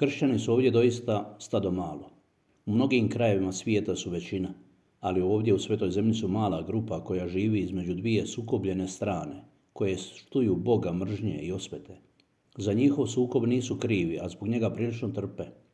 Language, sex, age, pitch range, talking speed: Croatian, male, 50-69, 95-115 Hz, 160 wpm